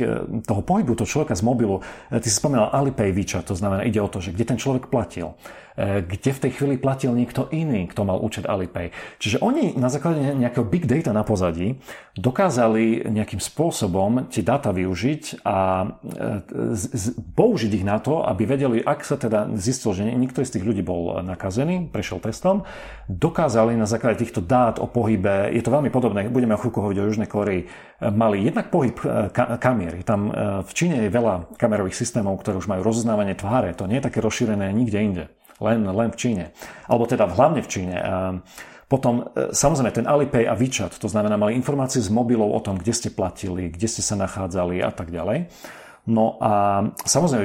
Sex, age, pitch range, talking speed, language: male, 40-59, 100-120 Hz, 180 wpm, Slovak